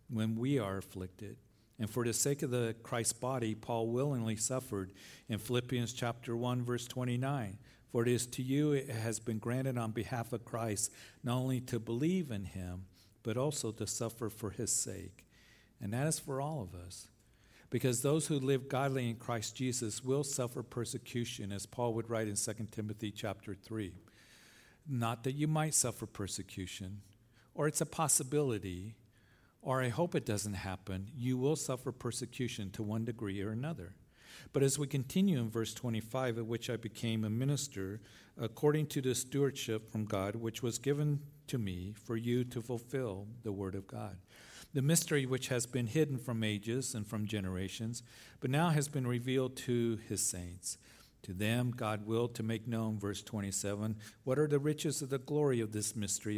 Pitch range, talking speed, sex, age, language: 105-130 Hz, 180 wpm, male, 50-69, English